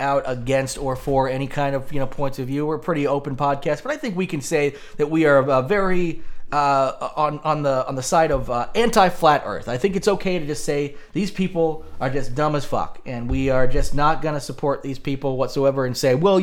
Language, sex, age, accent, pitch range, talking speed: English, male, 30-49, American, 125-160 Hz, 245 wpm